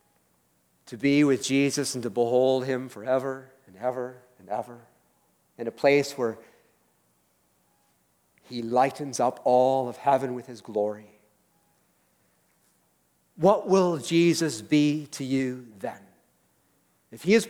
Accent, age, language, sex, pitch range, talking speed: American, 50-69, English, male, 125-185 Hz, 125 wpm